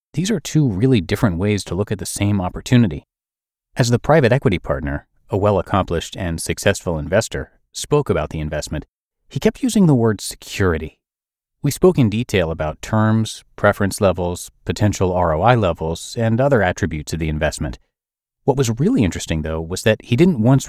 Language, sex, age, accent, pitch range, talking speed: English, male, 30-49, American, 85-120 Hz, 170 wpm